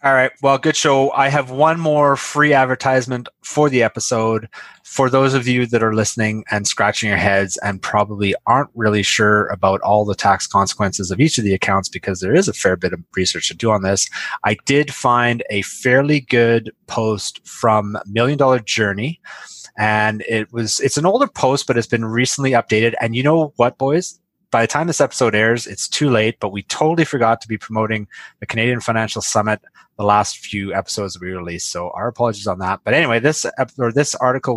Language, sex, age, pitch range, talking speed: English, male, 30-49, 105-130 Hz, 205 wpm